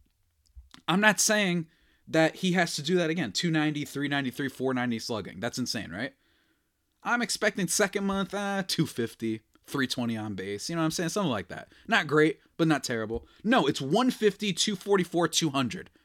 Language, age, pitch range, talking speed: English, 30-49, 135-225 Hz, 165 wpm